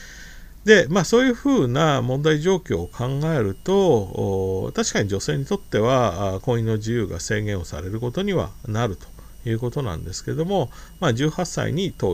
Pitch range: 100-160 Hz